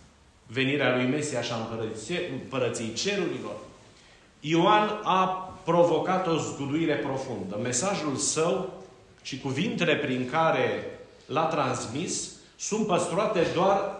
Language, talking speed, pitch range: Romanian, 105 wpm, 135-175 Hz